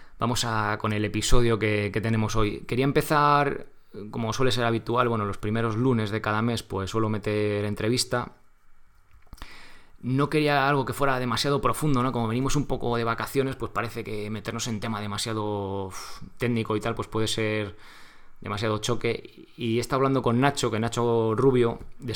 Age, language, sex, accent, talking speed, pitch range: 20-39, Spanish, male, Spanish, 175 wpm, 105-125 Hz